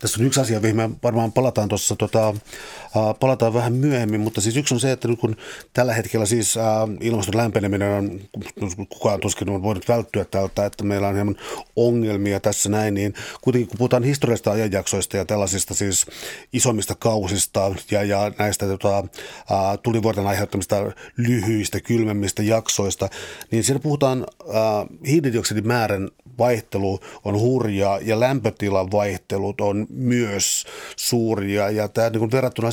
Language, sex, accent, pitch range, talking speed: Finnish, male, native, 100-120 Hz, 145 wpm